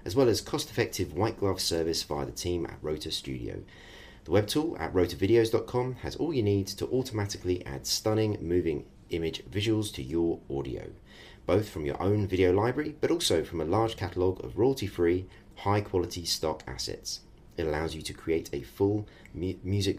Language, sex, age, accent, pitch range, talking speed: English, male, 30-49, British, 80-105 Hz, 170 wpm